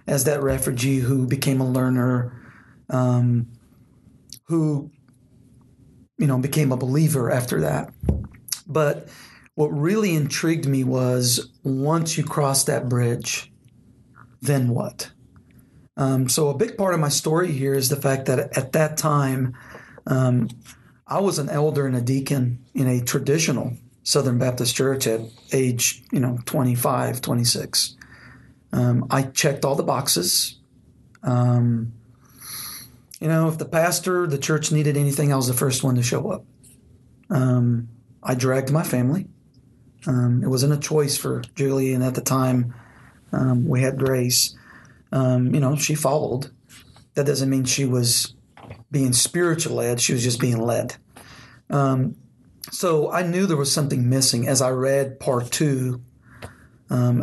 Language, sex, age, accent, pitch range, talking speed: English, male, 40-59, American, 125-145 Hz, 150 wpm